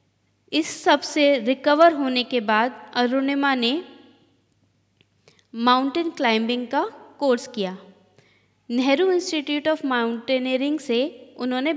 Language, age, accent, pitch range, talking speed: Hindi, 20-39, native, 235-295 Hz, 100 wpm